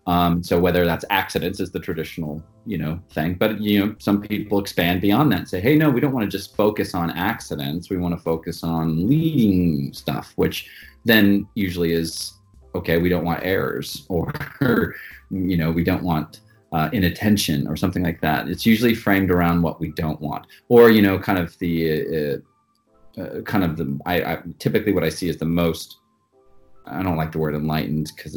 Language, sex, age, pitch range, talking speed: English, male, 30-49, 80-100 Hz, 200 wpm